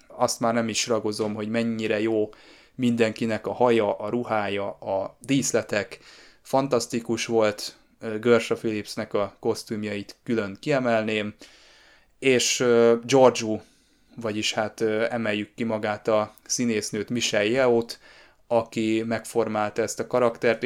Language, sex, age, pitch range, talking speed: Hungarian, male, 20-39, 110-120 Hz, 115 wpm